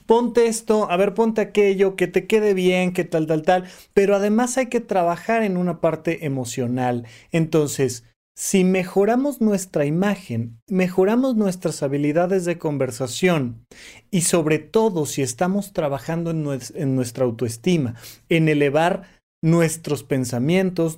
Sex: male